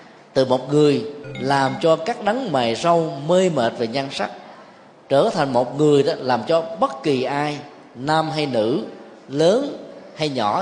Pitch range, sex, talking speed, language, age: 125-170 Hz, male, 170 wpm, Vietnamese, 20-39